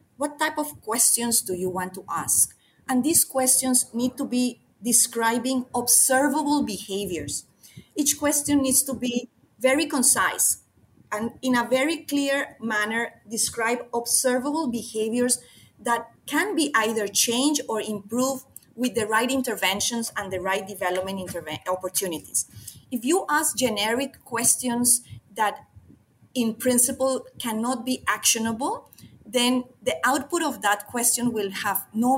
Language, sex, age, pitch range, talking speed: English, female, 30-49, 205-265 Hz, 130 wpm